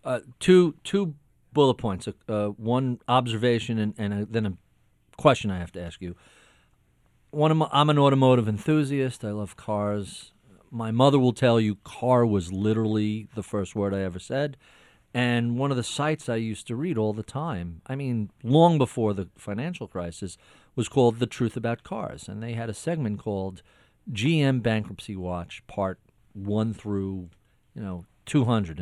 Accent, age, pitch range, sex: American, 40-59, 105-130 Hz, male